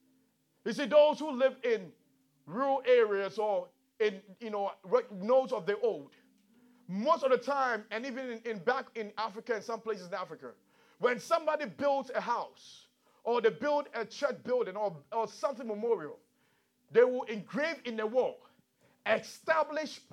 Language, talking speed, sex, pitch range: English, 160 wpm, male, 215-300 Hz